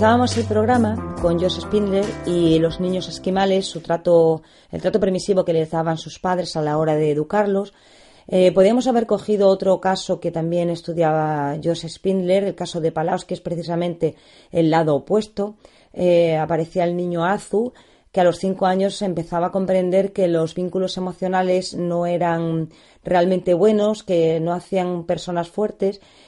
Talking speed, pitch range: 165 wpm, 170-200 Hz